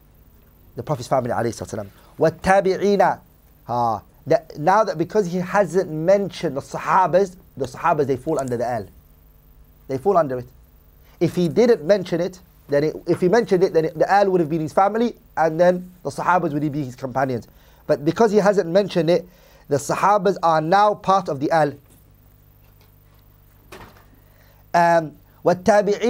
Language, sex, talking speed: English, male, 155 wpm